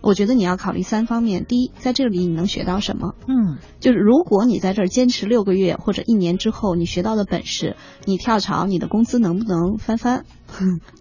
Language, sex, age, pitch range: Chinese, female, 20-39, 180-245 Hz